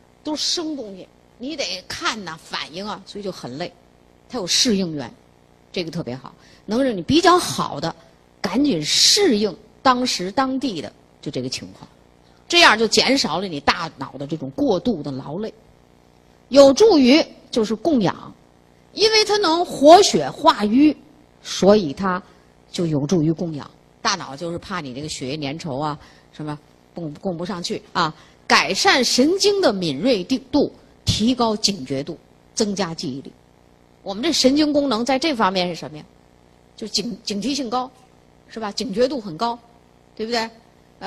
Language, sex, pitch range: Chinese, female, 150-250 Hz